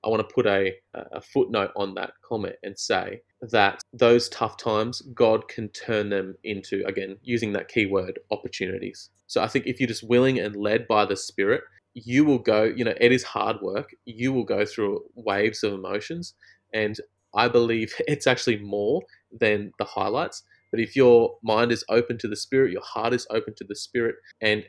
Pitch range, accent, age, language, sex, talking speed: 105-130 Hz, Australian, 20-39, English, male, 195 wpm